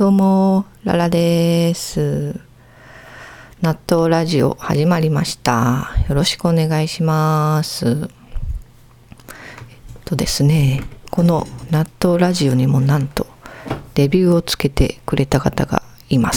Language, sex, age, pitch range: Japanese, female, 40-59, 135-175 Hz